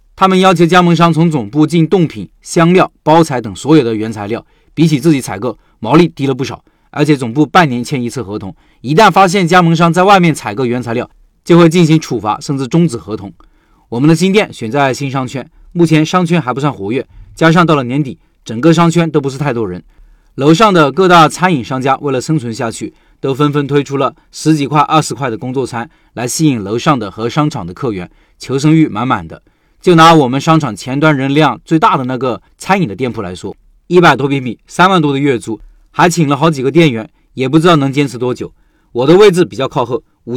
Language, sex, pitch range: Chinese, male, 125-170 Hz